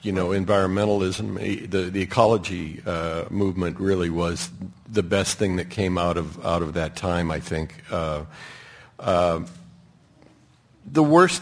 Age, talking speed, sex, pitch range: 50-69, 140 wpm, male, 100-130 Hz